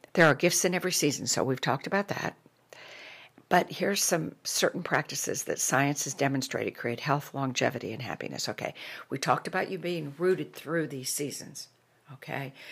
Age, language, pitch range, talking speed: 60-79, English, 135-160 Hz, 170 wpm